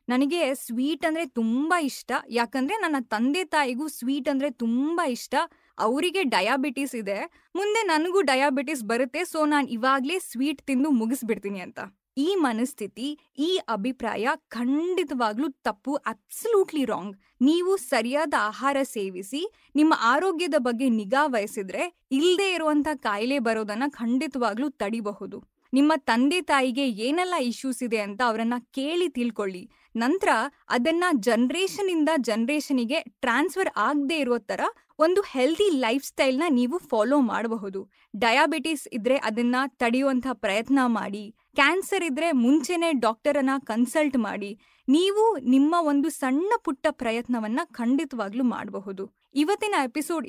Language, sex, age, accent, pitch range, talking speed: Kannada, female, 20-39, native, 235-315 Hz, 115 wpm